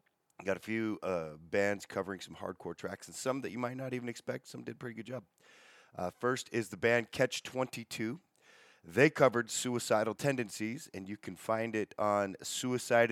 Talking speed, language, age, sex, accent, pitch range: 185 wpm, English, 30-49, male, American, 95-120 Hz